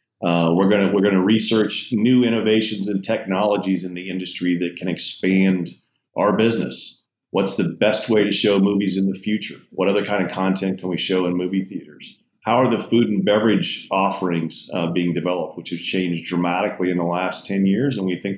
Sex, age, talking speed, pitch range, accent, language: male, 40-59, 200 wpm, 90-105 Hz, American, English